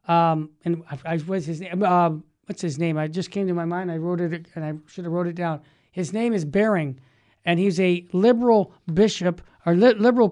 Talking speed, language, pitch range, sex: 225 wpm, English, 180-245 Hz, male